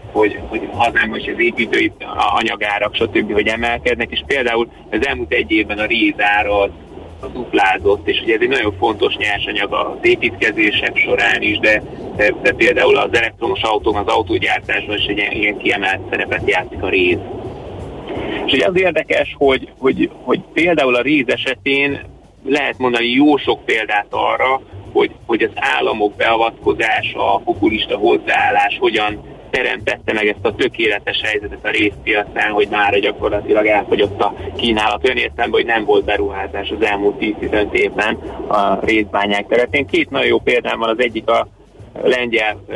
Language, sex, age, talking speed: Hungarian, male, 30-49, 155 wpm